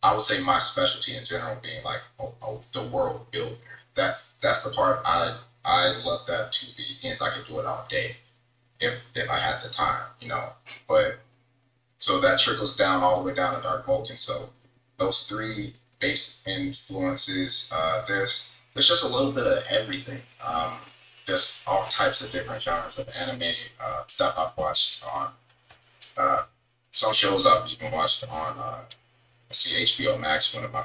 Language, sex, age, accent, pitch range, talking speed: English, male, 30-49, American, 110-130 Hz, 185 wpm